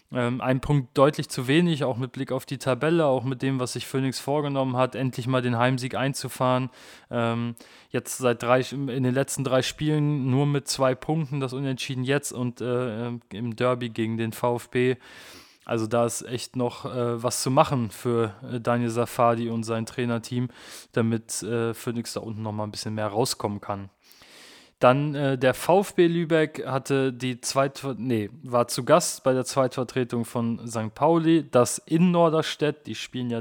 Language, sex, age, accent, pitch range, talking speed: German, male, 20-39, German, 120-140 Hz, 170 wpm